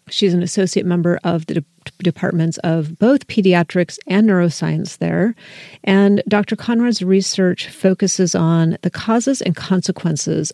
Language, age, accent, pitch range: English, 40-59, American, 165-190 Hz